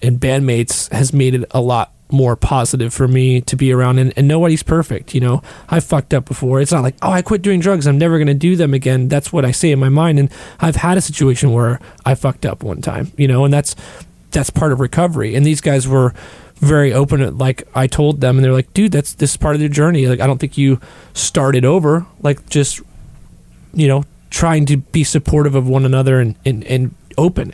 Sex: male